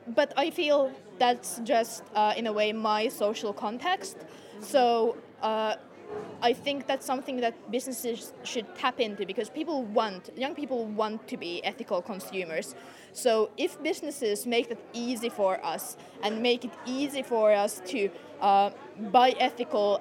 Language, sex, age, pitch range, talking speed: English, female, 20-39, 205-250 Hz, 155 wpm